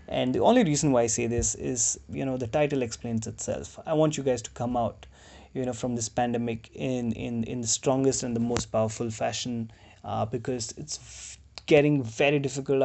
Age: 20-39